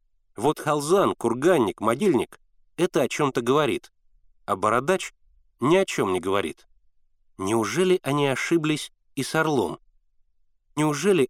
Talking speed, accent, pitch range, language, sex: 115 wpm, native, 110-165 Hz, Russian, male